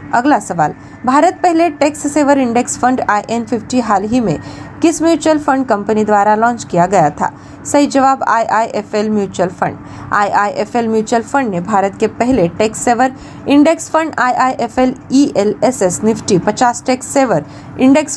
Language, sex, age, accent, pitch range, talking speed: Marathi, female, 20-39, native, 210-270 Hz, 170 wpm